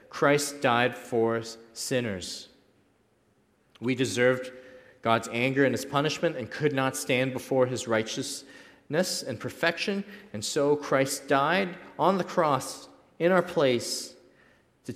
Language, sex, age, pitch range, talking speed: English, male, 40-59, 100-130 Hz, 125 wpm